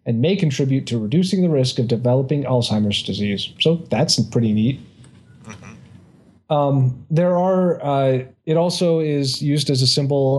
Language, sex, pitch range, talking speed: English, male, 120-155 Hz, 150 wpm